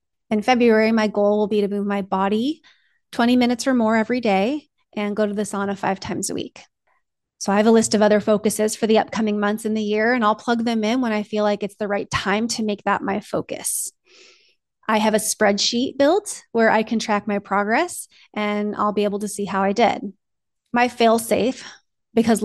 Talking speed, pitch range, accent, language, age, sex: 220 wpm, 210-245 Hz, American, English, 30-49, female